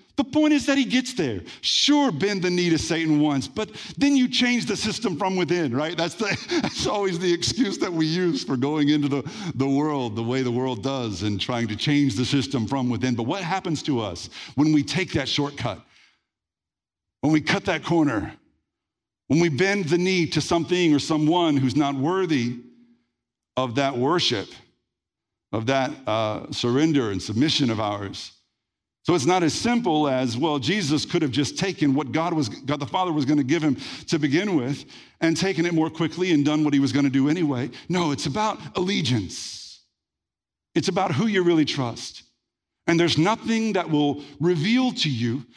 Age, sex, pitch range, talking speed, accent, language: 50-69, male, 130-180 Hz, 190 wpm, American, English